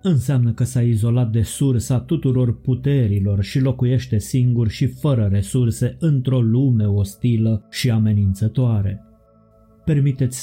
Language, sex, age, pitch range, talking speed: Romanian, male, 30-49, 105-125 Hz, 115 wpm